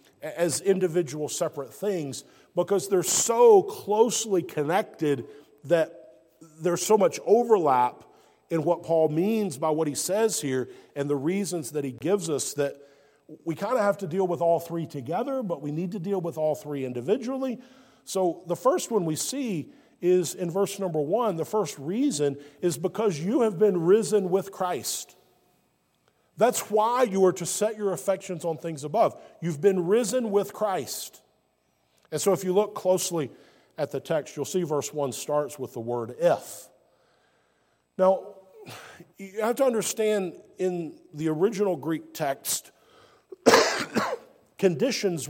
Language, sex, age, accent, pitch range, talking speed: English, male, 40-59, American, 155-205 Hz, 155 wpm